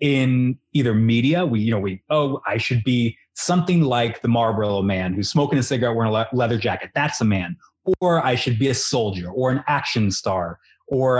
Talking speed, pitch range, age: 205 wpm, 110-130 Hz, 30-49